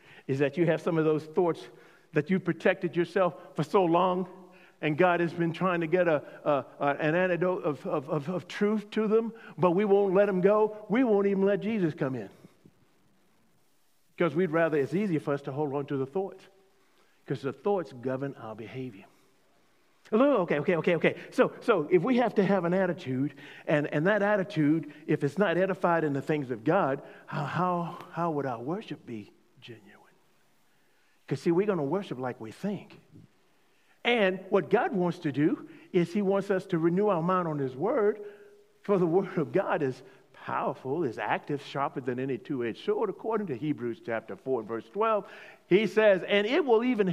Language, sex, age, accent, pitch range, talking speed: English, male, 50-69, American, 145-200 Hz, 195 wpm